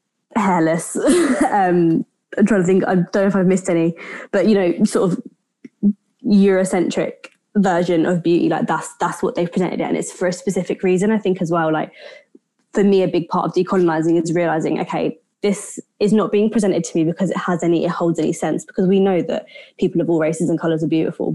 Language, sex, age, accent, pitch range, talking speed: English, female, 20-39, British, 170-200 Hz, 215 wpm